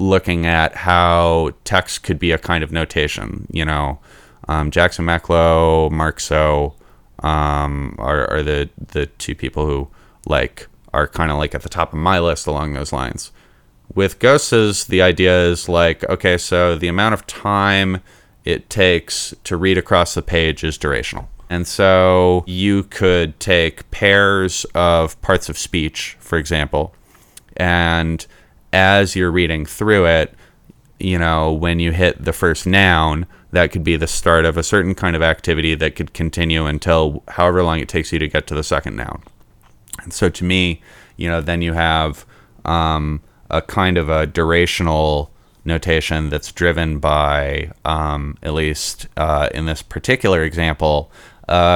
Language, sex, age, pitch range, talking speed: English, male, 30-49, 80-90 Hz, 160 wpm